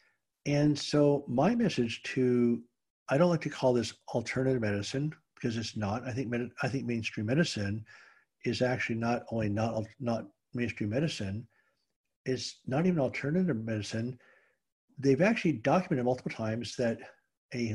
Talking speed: 140 wpm